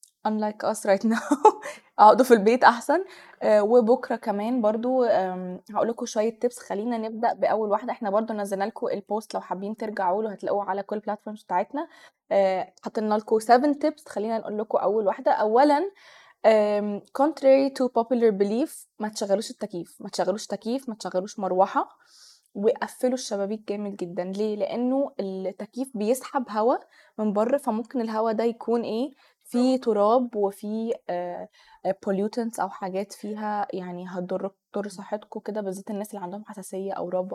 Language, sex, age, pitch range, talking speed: Arabic, female, 20-39, 200-245 Hz, 145 wpm